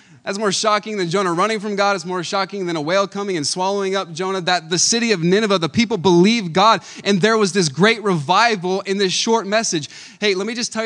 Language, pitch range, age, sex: English, 155-205 Hz, 20-39, male